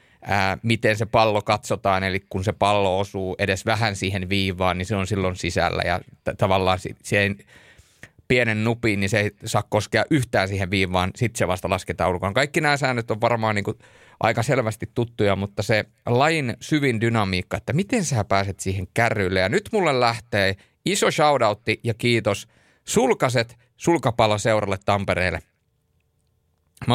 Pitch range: 95-115 Hz